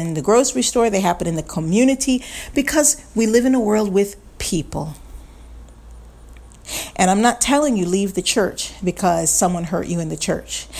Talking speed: 180 wpm